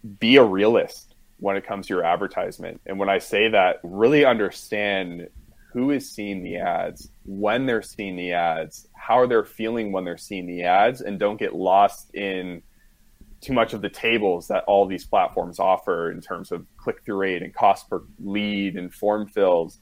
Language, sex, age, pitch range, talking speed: English, male, 20-39, 90-105 Hz, 190 wpm